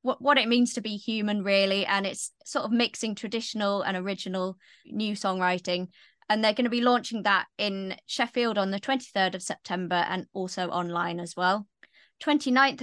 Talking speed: 175 wpm